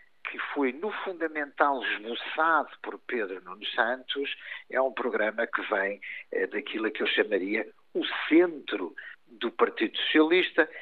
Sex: male